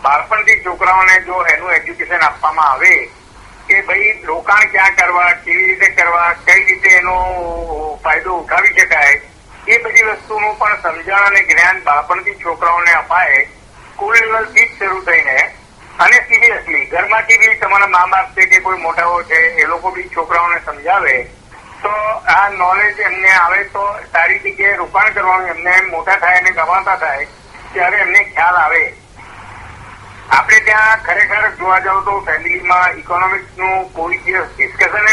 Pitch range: 175-215 Hz